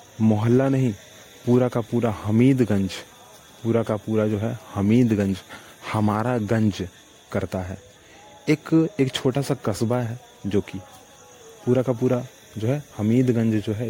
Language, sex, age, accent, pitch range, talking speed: Hindi, male, 30-49, native, 105-125 Hz, 140 wpm